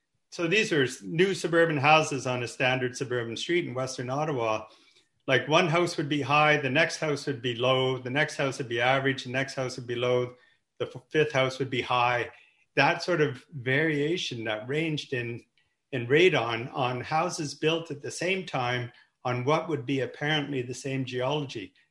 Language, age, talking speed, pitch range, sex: English, 50-69, 190 wpm, 125-155 Hz, male